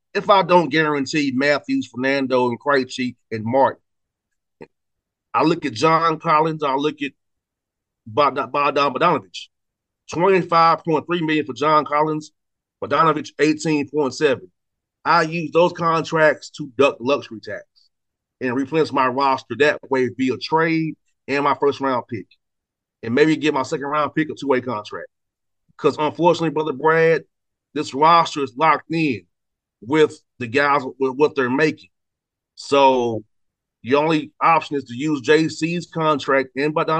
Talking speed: 145 wpm